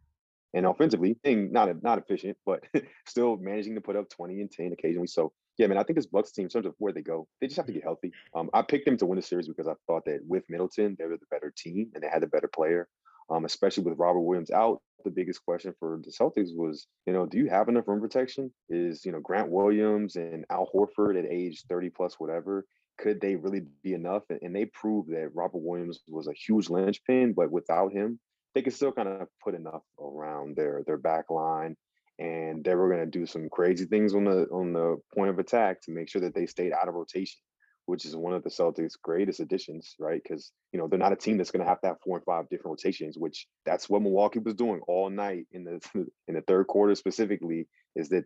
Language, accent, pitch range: English, American, 85-105 Hz